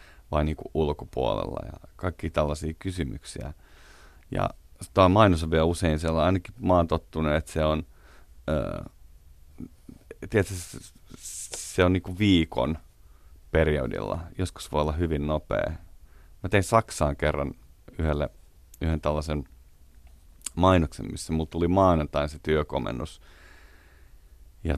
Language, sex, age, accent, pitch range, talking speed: Finnish, male, 30-49, native, 75-80 Hz, 120 wpm